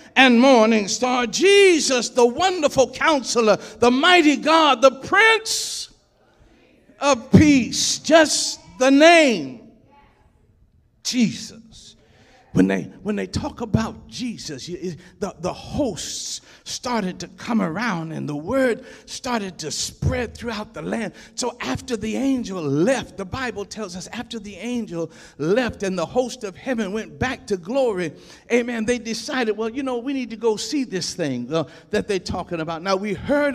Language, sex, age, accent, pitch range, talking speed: English, male, 50-69, American, 205-250 Hz, 150 wpm